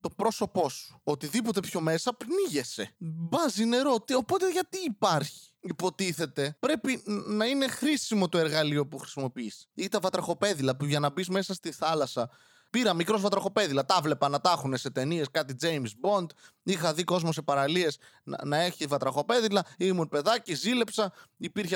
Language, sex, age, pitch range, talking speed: Greek, male, 20-39, 140-230 Hz, 155 wpm